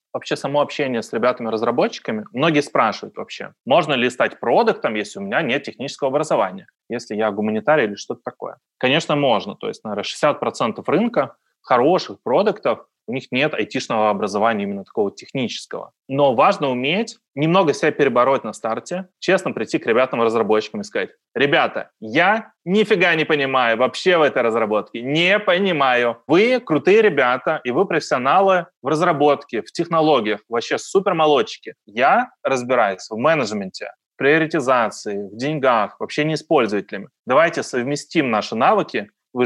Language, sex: Russian, male